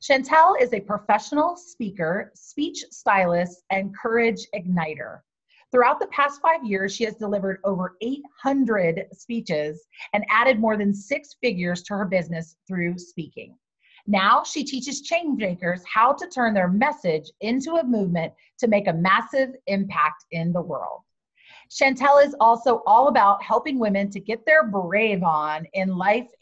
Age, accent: 30-49, American